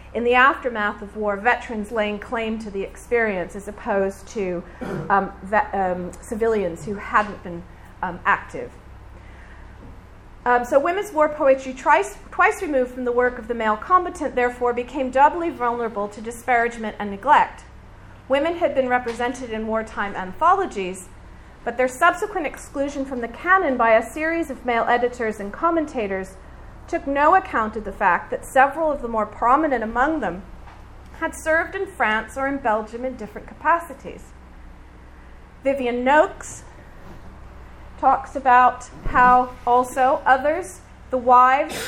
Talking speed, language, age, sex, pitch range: 145 wpm, English, 40-59, female, 210-275 Hz